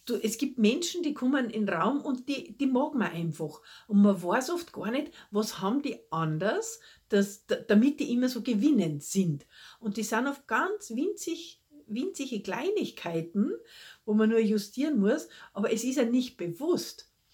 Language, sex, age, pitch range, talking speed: German, female, 50-69, 200-270 Hz, 165 wpm